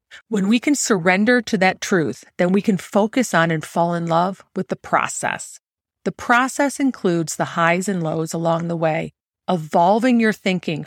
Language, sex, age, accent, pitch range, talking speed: English, female, 40-59, American, 170-215 Hz, 175 wpm